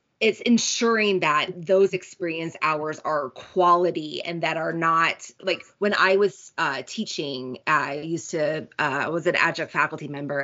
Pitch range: 175-230 Hz